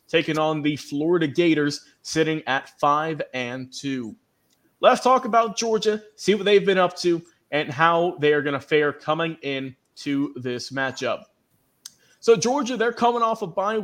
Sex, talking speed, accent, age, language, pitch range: male, 170 wpm, American, 30-49, English, 145-185 Hz